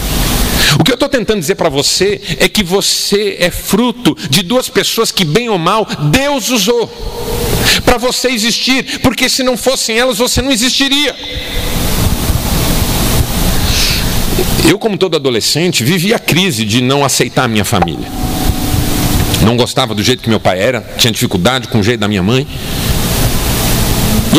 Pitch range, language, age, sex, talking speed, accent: 125-180 Hz, Portuguese, 50-69, male, 155 wpm, Brazilian